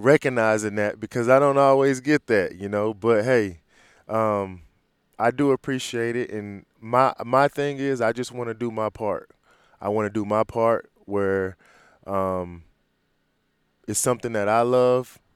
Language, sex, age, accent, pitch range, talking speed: English, male, 20-39, American, 95-115 Hz, 165 wpm